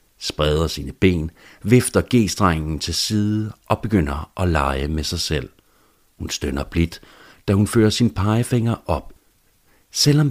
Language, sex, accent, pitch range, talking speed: Danish, male, native, 85-105 Hz, 140 wpm